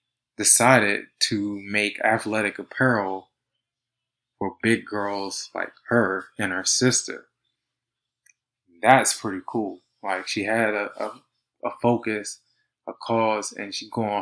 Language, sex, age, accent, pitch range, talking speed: English, male, 20-39, American, 105-130 Hz, 120 wpm